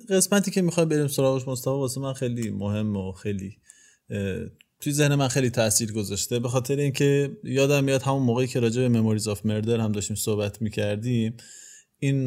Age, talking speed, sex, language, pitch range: 20-39, 180 wpm, male, Persian, 110-135 Hz